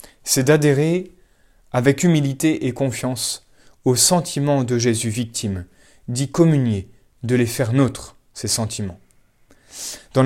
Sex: male